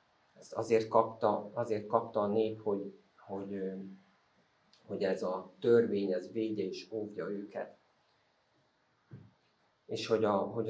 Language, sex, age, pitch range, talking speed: Hungarian, male, 50-69, 100-115 Hz, 125 wpm